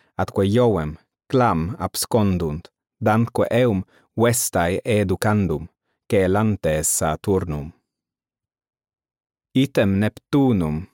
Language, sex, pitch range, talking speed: English, male, 90-120 Hz, 65 wpm